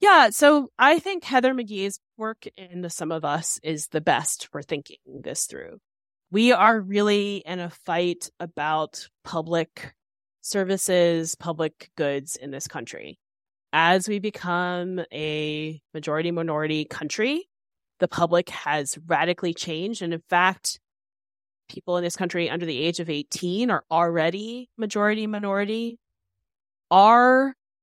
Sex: female